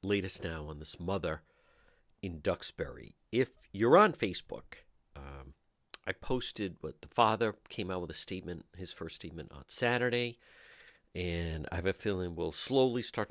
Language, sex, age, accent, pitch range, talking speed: English, male, 50-69, American, 80-100 Hz, 160 wpm